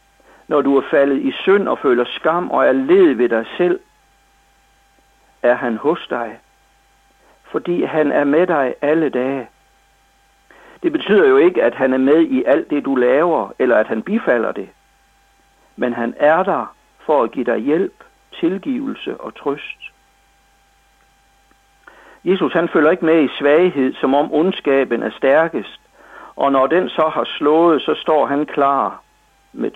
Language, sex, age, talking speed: Danish, male, 60-79, 160 wpm